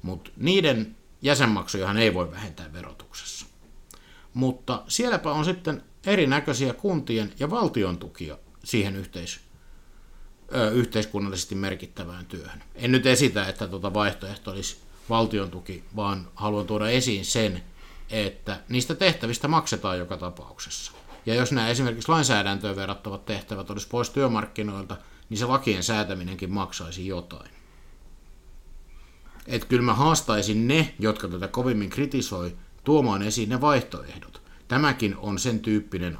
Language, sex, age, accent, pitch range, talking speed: Finnish, male, 50-69, native, 95-120 Hz, 120 wpm